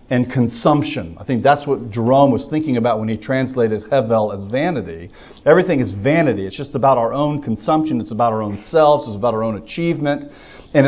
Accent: American